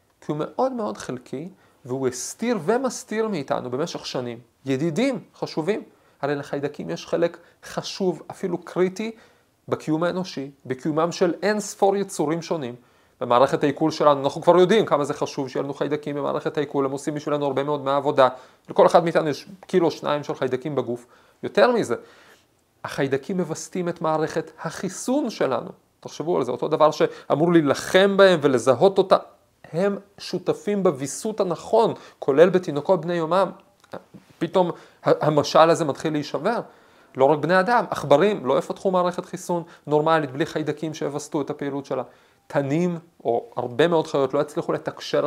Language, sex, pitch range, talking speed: Hebrew, male, 140-180 Hz, 150 wpm